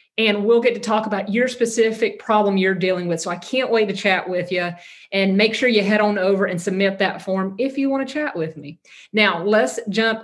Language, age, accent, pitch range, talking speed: English, 40-59, American, 180-225 Hz, 240 wpm